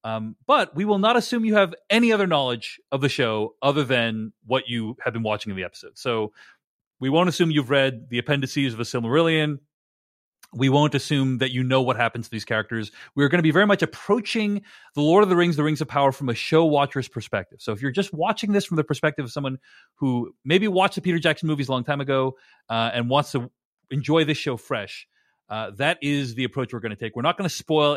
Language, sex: English, male